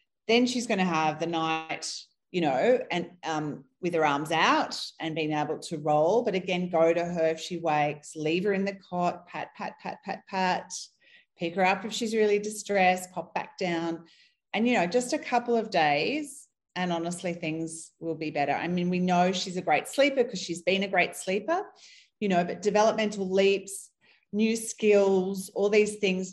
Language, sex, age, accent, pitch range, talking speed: English, female, 30-49, Australian, 165-230 Hz, 195 wpm